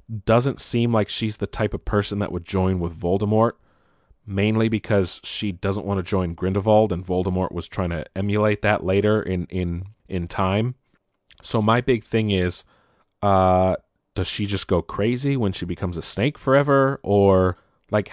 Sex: male